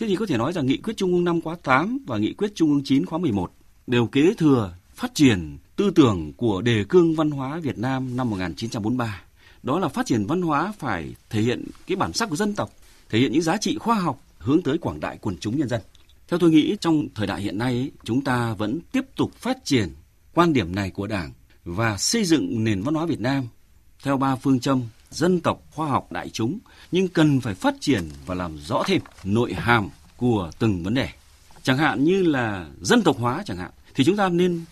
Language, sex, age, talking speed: Vietnamese, male, 30-49, 230 wpm